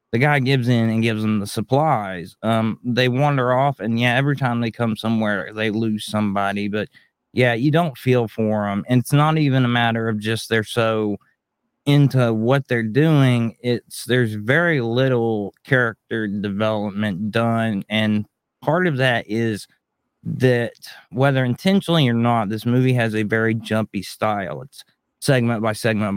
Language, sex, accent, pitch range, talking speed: English, male, American, 110-135 Hz, 165 wpm